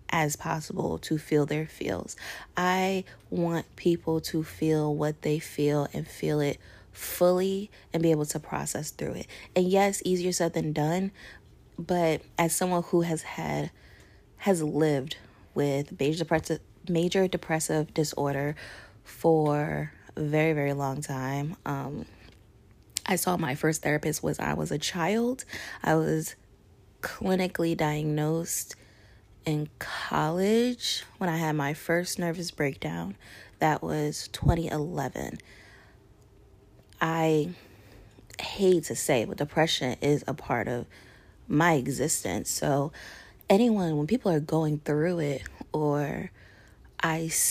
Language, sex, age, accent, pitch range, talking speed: English, female, 20-39, American, 125-165 Hz, 125 wpm